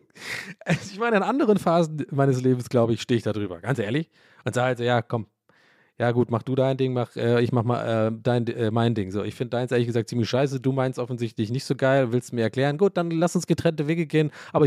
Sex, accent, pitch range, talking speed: male, German, 125-180 Hz, 250 wpm